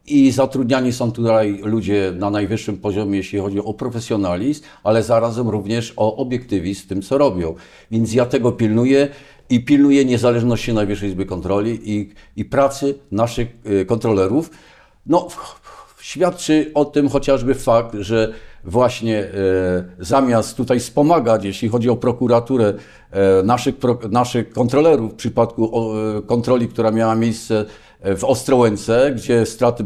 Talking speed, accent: 135 wpm, native